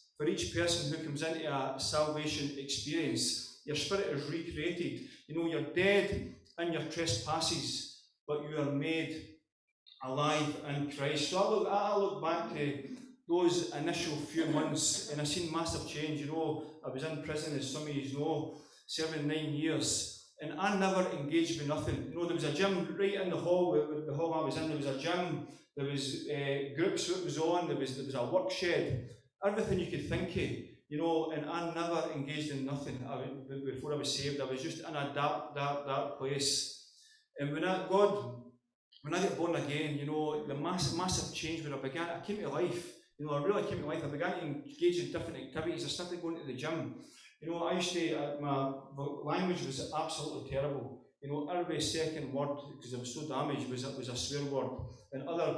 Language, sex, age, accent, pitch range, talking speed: English, male, 30-49, British, 140-170 Hz, 205 wpm